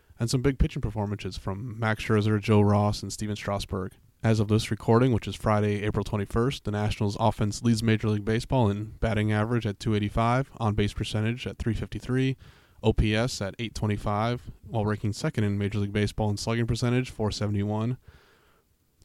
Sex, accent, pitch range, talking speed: male, American, 105-115 Hz, 165 wpm